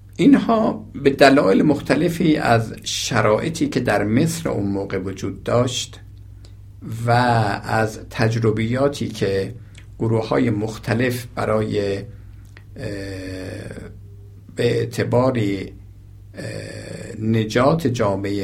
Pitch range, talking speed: 100-115 Hz, 80 wpm